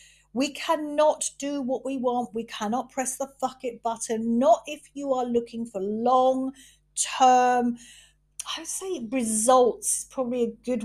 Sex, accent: female, British